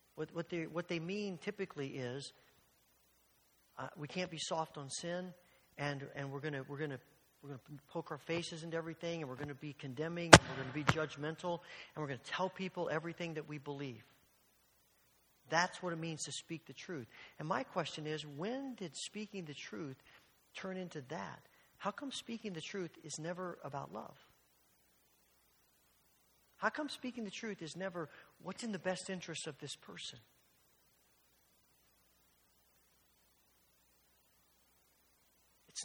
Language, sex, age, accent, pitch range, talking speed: English, male, 50-69, American, 150-205 Hz, 160 wpm